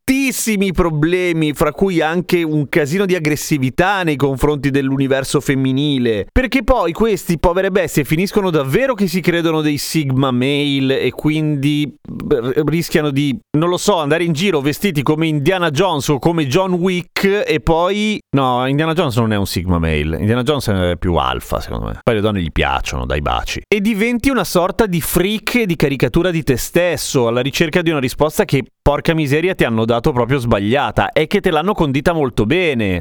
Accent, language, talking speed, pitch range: native, Italian, 180 wpm, 135-180 Hz